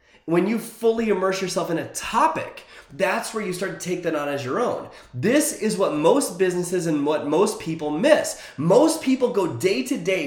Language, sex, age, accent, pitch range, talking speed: English, male, 30-49, American, 150-215 Hz, 205 wpm